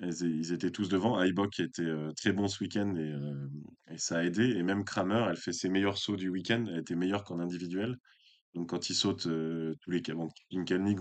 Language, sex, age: French, male, 20-39